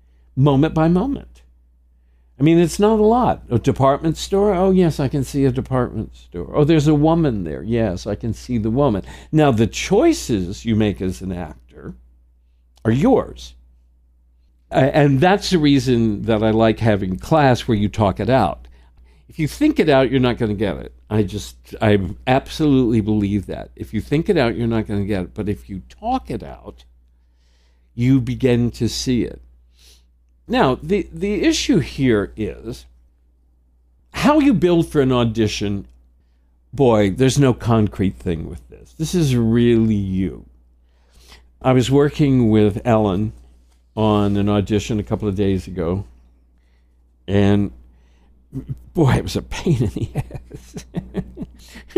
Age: 60-79